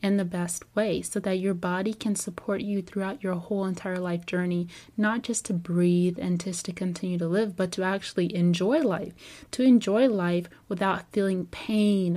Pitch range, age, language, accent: 185-215 Hz, 20-39, English, American